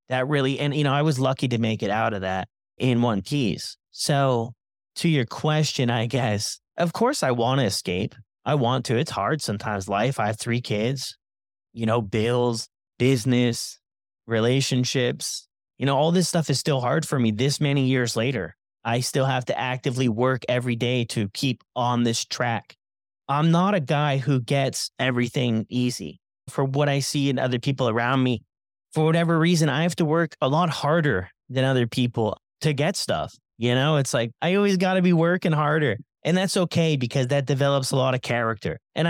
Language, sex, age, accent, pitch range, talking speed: English, male, 30-49, American, 115-150 Hz, 195 wpm